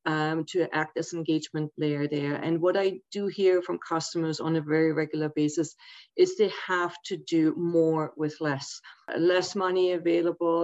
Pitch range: 160-185 Hz